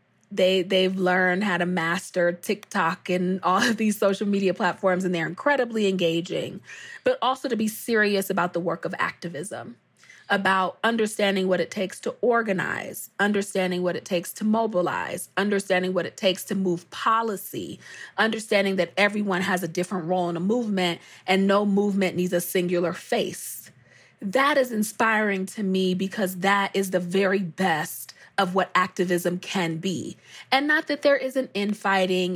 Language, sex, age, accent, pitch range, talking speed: English, female, 30-49, American, 180-205 Hz, 160 wpm